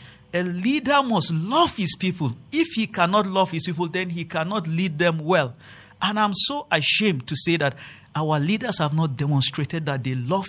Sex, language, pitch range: male, English, 135-215 Hz